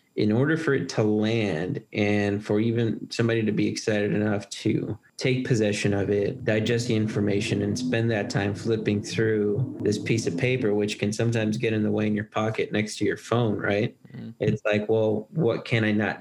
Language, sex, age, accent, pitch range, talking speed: English, male, 20-39, American, 105-120 Hz, 200 wpm